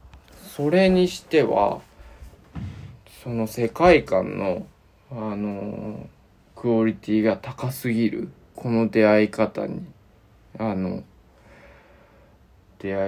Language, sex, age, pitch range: Japanese, male, 20-39, 100-115 Hz